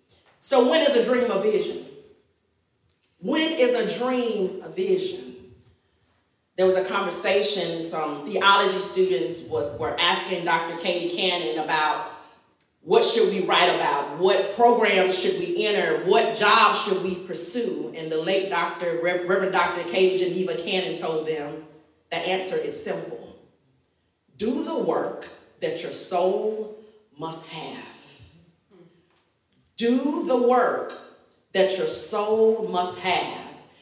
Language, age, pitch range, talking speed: English, 30-49, 175-290 Hz, 130 wpm